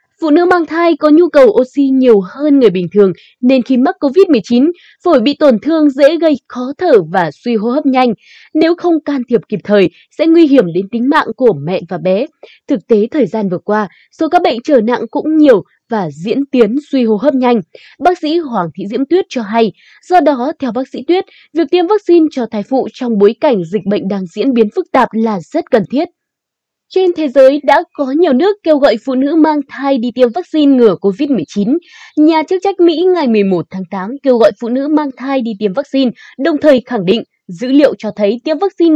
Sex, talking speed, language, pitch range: female, 225 wpm, Vietnamese, 220-315 Hz